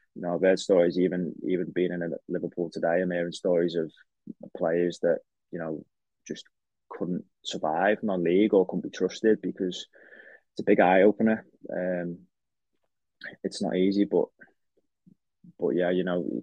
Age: 20-39